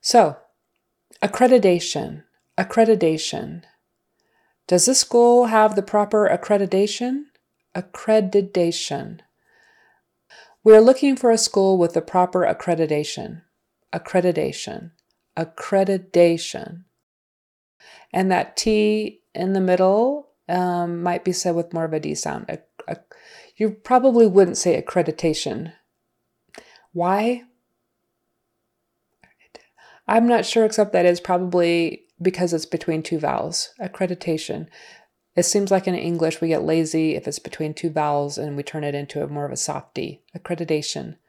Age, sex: 30-49, female